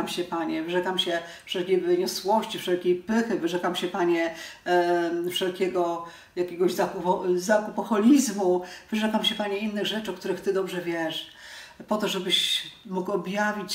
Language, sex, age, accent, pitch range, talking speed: Polish, female, 40-59, native, 170-195 Hz, 135 wpm